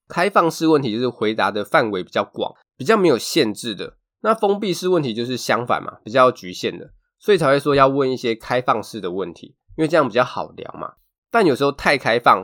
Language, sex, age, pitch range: Chinese, male, 20-39, 110-165 Hz